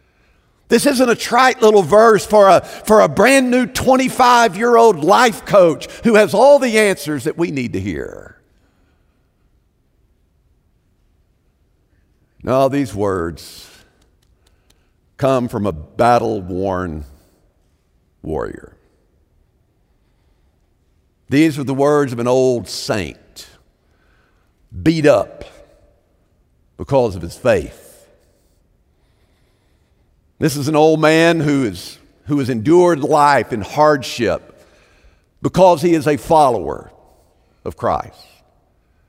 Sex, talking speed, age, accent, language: male, 100 wpm, 50-69, American, English